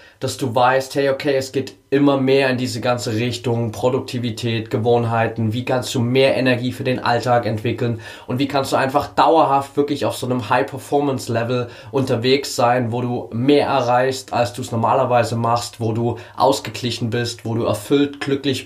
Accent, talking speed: German, 175 wpm